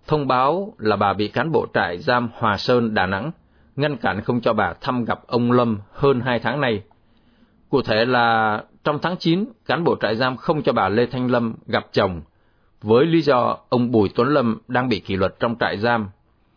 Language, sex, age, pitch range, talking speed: Vietnamese, male, 20-39, 105-135 Hz, 210 wpm